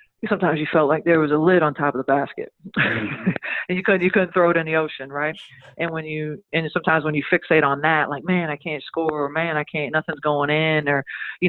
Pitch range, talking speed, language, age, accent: 140-160 Hz, 250 wpm, English, 40-59, American